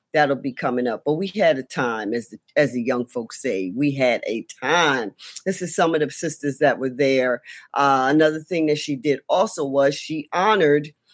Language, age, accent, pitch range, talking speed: English, 40-59, American, 135-160 Hz, 205 wpm